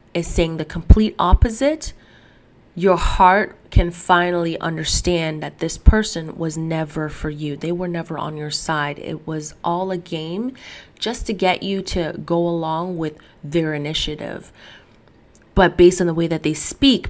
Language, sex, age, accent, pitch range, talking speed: English, female, 30-49, American, 155-185 Hz, 160 wpm